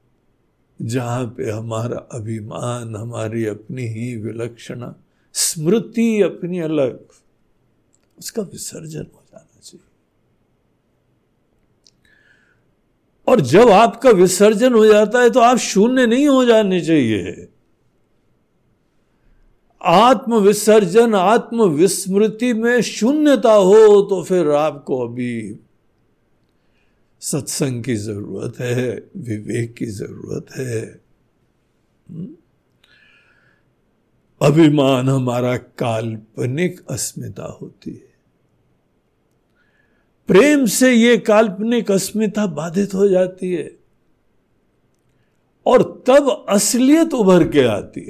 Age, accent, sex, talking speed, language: 60-79, native, male, 90 wpm, Hindi